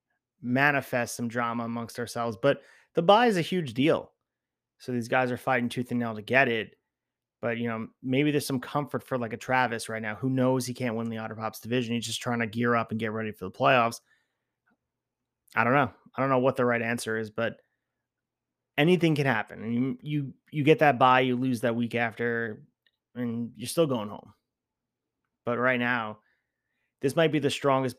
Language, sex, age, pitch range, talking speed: English, male, 30-49, 115-135 Hz, 210 wpm